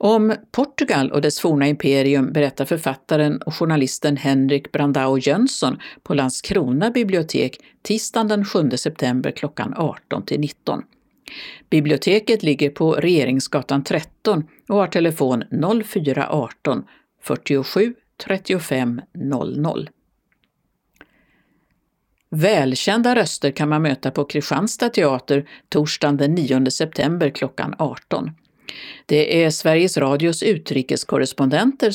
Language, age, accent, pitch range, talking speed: Swedish, 50-69, native, 140-200 Hz, 100 wpm